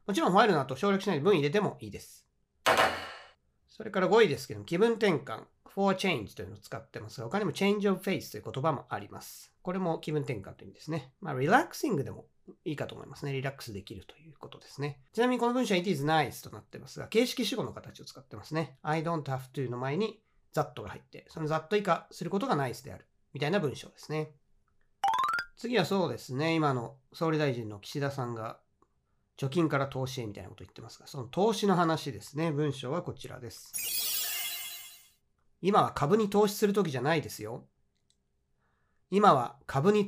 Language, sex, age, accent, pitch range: Japanese, male, 40-59, native, 125-190 Hz